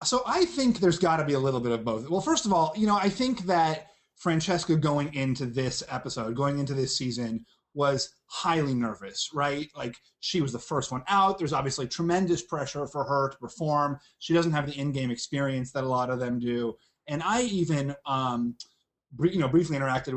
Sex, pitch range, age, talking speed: male, 135-175 Hz, 30-49, 210 wpm